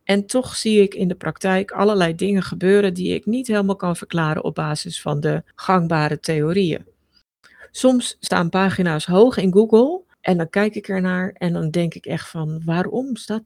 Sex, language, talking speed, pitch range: female, Dutch, 185 wpm, 175-230 Hz